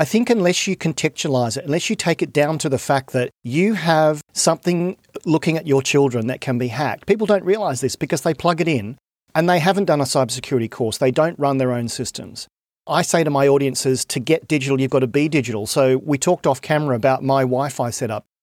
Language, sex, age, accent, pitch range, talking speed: English, male, 40-59, Australian, 130-160 Hz, 230 wpm